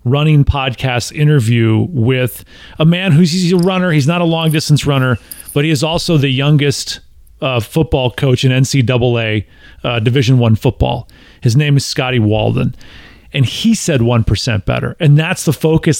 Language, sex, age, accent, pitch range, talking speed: English, male, 40-59, American, 125-175 Hz, 175 wpm